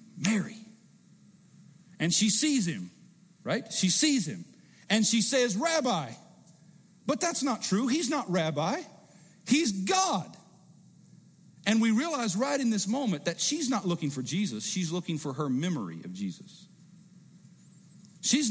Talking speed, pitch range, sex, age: 140 wpm, 165-210 Hz, male, 40-59